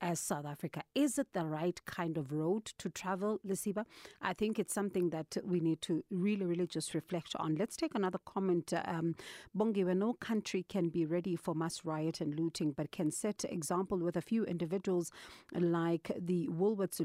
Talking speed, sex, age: 190 wpm, female, 40-59